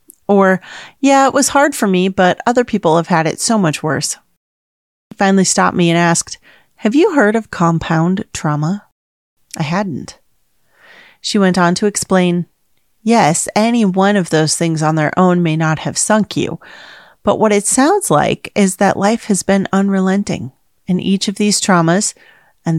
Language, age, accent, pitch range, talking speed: English, 30-49, American, 160-200 Hz, 175 wpm